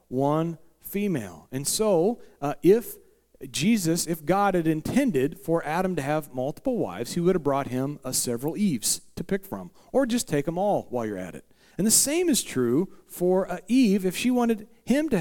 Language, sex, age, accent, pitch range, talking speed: English, male, 40-59, American, 130-195 Hz, 195 wpm